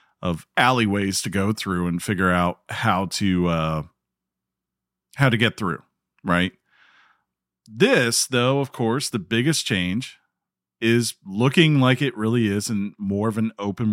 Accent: American